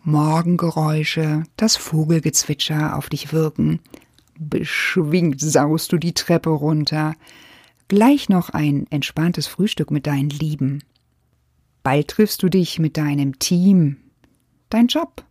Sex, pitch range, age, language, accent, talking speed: female, 145-180 Hz, 50-69, German, German, 115 wpm